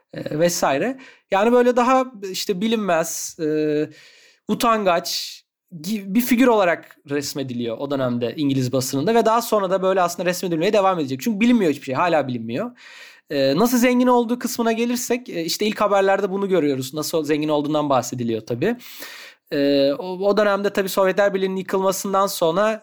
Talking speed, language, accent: 145 wpm, Turkish, native